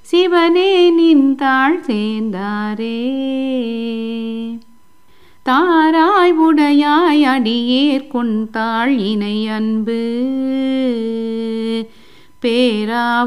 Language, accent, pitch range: Tamil, native, 245-340 Hz